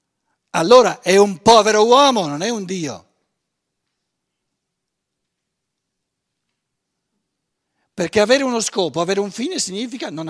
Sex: male